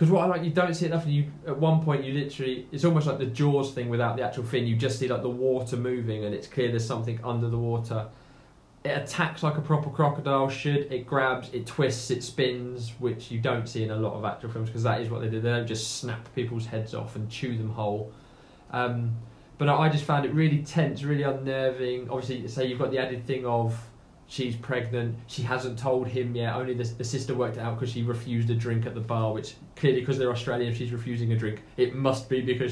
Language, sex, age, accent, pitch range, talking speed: English, male, 20-39, British, 120-140 Hz, 240 wpm